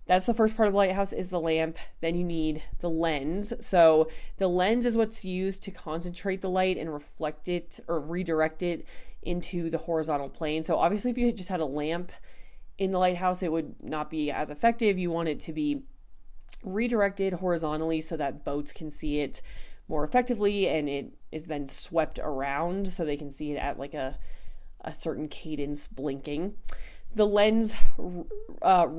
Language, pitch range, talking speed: English, 150-185 Hz, 180 wpm